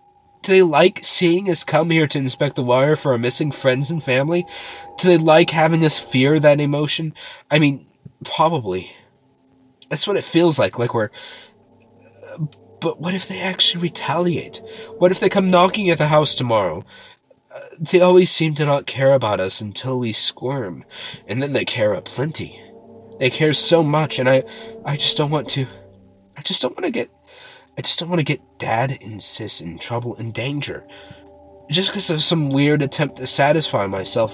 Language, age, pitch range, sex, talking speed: English, 20-39, 110-155 Hz, male, 185 wpm